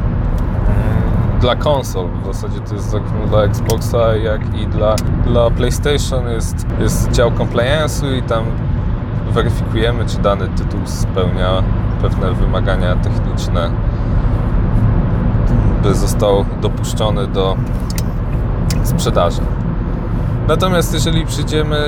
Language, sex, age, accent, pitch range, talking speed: Polish, male, 20-39, native, 95-120 Hz, 100 wpm